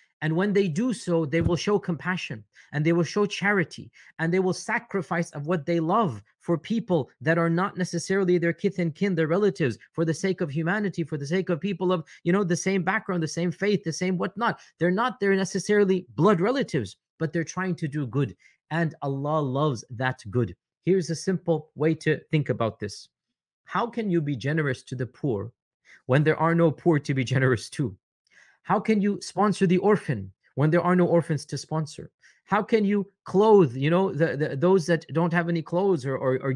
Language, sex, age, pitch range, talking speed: English, male, 30-49, 150-190 Hz, 210 wpm